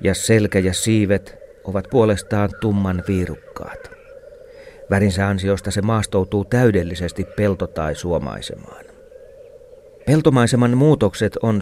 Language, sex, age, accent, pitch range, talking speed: Finnish, male, 40-59, native, 95-130 Hz, 100 wpm